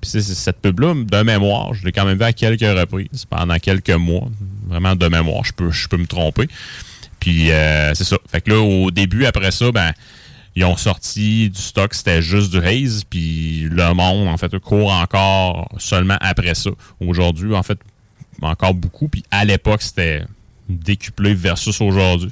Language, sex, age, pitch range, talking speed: French, male, 30-49, 90-105 Hz, 190 wpm